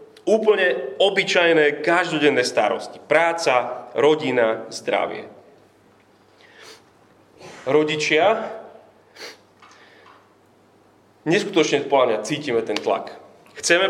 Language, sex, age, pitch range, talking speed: Slovak, male, 30-49, 125-195 Hz, 65 wpm